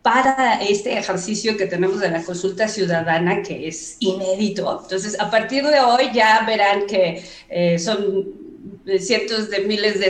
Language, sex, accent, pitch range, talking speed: Spanish, female, Mexican, 190-225 Hz, 155 wpm